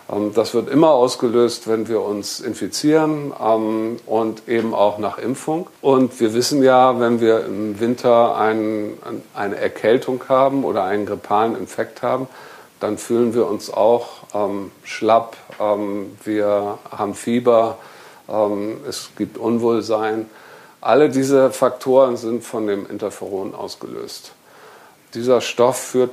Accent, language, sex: German, German, male